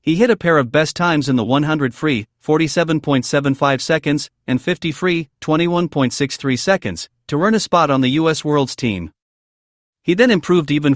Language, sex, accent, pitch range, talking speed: English, male, American, 130-170 Hz, 170 wpm